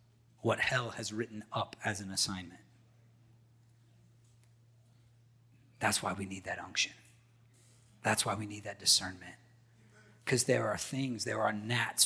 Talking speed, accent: 135 wpm, American